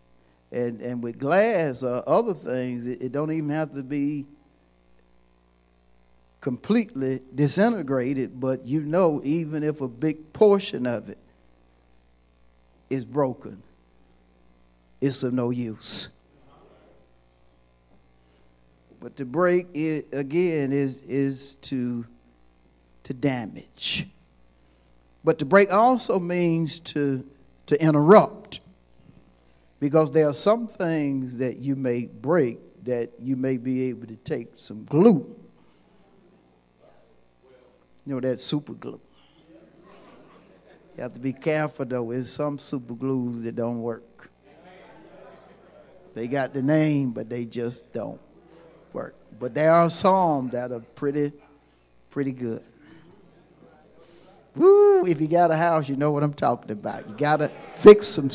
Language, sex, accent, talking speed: English, male, American, 125 wpm